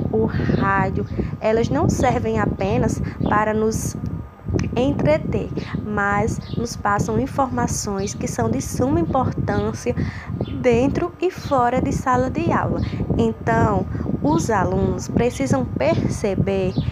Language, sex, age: Portuguese, female, 20-39